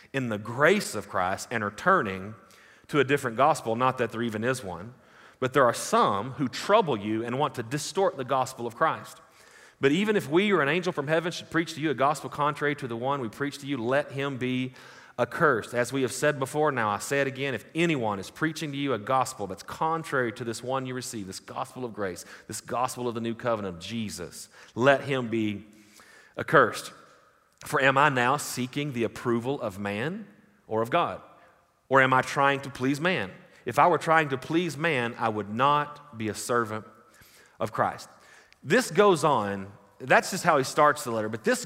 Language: English